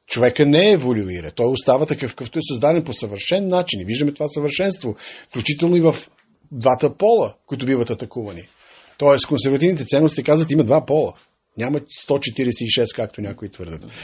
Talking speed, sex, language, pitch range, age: 160 wpm, male, Bulgarian, 120-160 Hz, 50-69